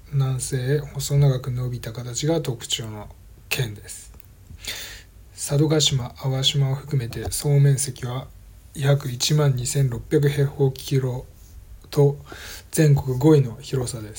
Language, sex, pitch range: Japanese, male, 100-140 Hz